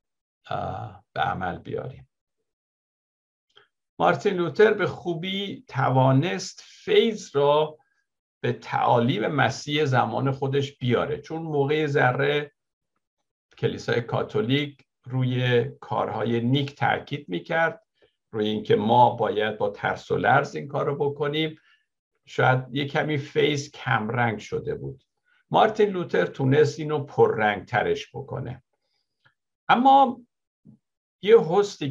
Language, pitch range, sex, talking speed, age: Persian, 135-200 Hz, male, 105 wpm, 50-69